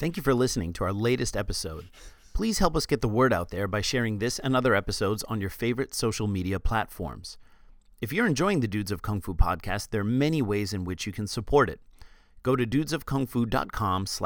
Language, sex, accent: English, male, American